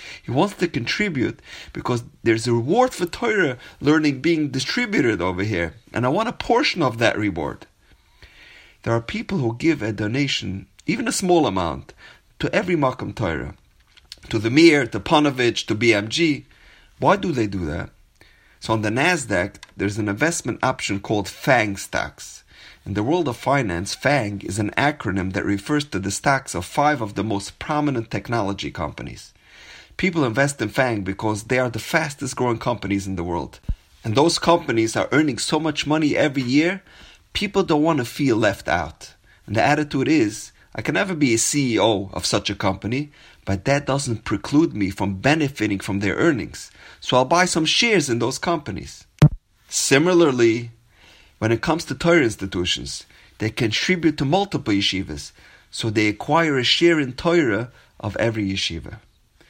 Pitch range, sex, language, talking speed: 100-150 Hz, male, English, 170 wpm